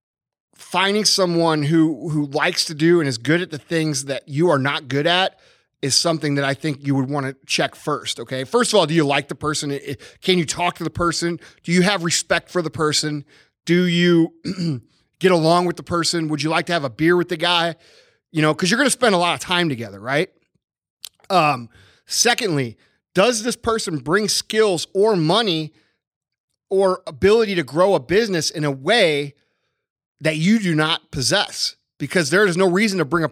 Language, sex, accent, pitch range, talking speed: English, male, American, 150-185 Hz, 205 wpm